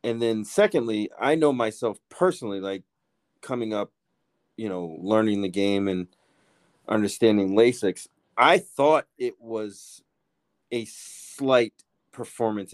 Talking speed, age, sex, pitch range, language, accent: 120 wpm, 30-49, male, 100-130 Hz, English, American